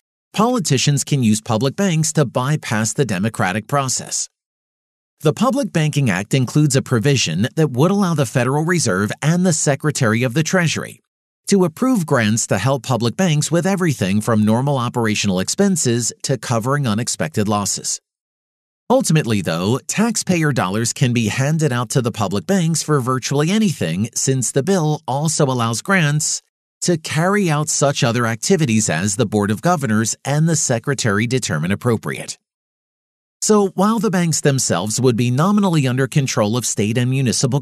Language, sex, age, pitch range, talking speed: English, male, 40-59, 115-165 Hz, 155 wpm